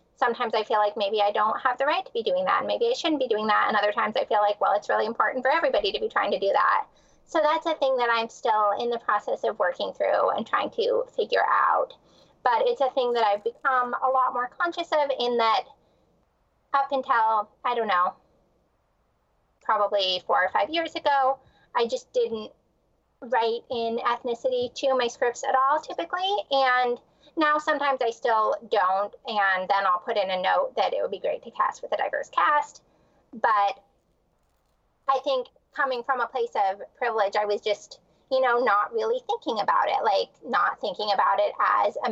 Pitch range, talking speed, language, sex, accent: 220-305 Hz, 205 wpm, English, female, American